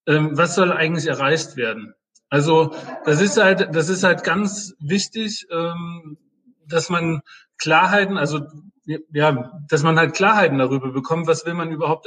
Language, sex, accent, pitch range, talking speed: German, male, German, 145-180 Hz, 145 wpm